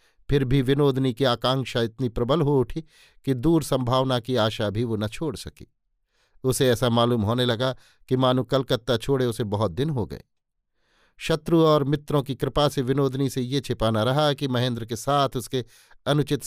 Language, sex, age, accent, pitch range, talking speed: Hindi, male, 50-69, native, 120-145 Hz, 180 wpm